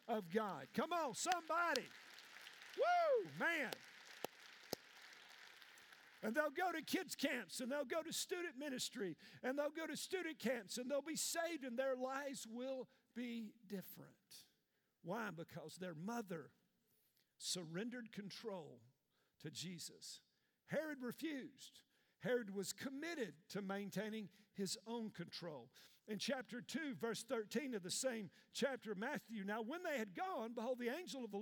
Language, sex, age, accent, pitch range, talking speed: English, male, 50-69, American, 200-275 Hz, 140 wpm